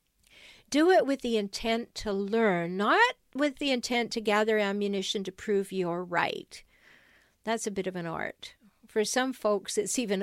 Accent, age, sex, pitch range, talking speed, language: American, 50-69, female, 195-245 Hz, 170 wpm, English